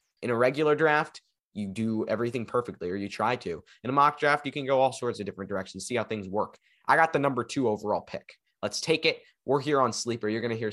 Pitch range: 105-155 Hz